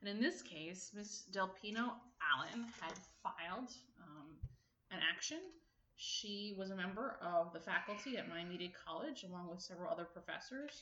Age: 30-49